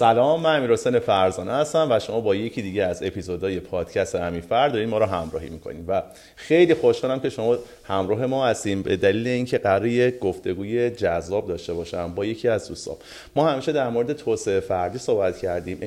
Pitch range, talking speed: 90-145 Hz, 180 wpm